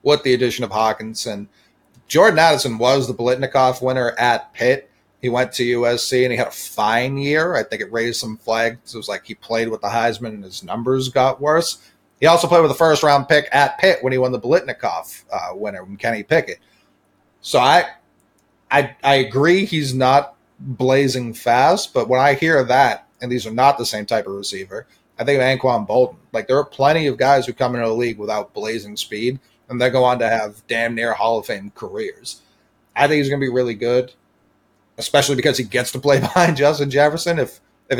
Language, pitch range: English, 115-140 Hz